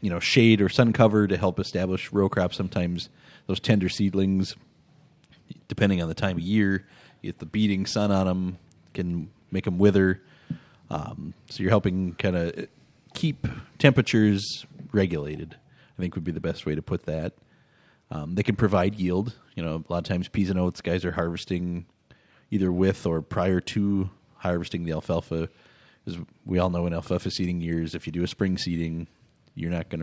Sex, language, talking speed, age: male, English, 185 wpm, 30-49